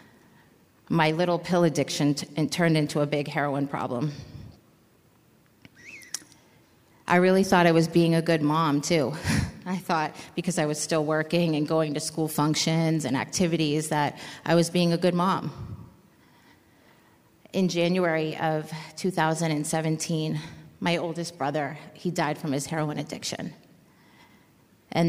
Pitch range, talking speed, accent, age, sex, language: 145-165 Hz, 130 wpm, American, 30-49, female, English